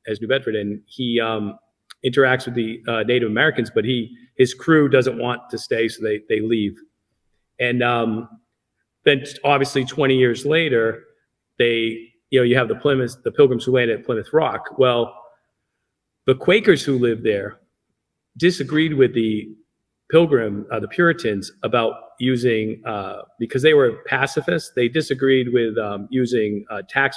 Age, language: 40-59, English